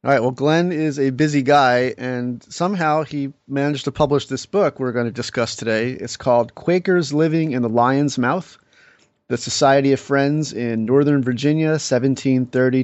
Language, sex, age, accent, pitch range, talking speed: English, male, 30-49, American, 120-155 Hz, 175 wpm